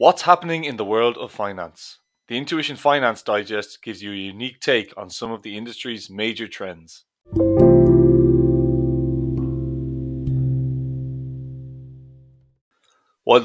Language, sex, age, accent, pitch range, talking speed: English, male, 30-49, Irish, 90-130 Hz, 105 wpm